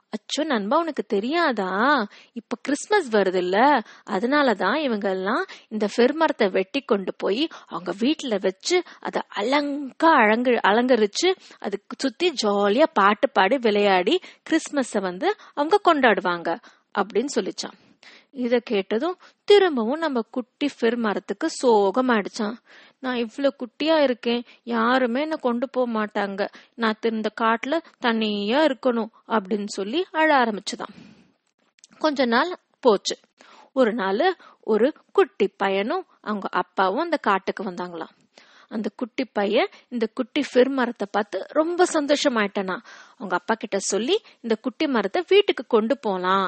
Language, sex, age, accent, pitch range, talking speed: Tamil, female, 20-39, native, 200-290 Hz, 115 wpm